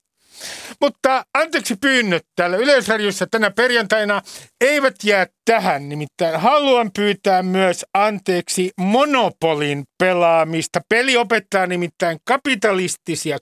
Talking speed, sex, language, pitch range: 95 wpm, male, Finnish, 170-230 Hz